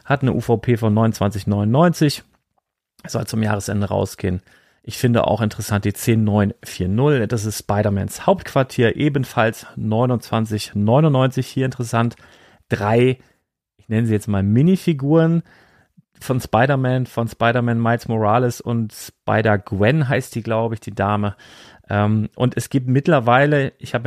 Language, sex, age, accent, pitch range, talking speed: German, male, 40-59, German, 105-125 Hz, 125 wpm